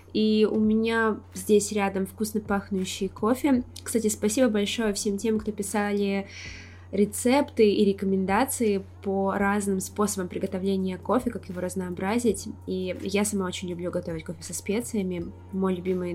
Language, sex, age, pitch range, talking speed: English, female, 20-39, 145-205 Hz, 140 wpm